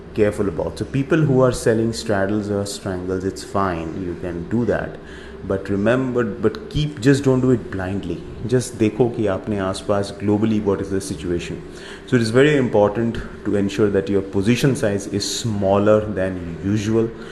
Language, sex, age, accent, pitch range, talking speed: English, male, 30-49, Indian, 95-115 Hz, 175 wpm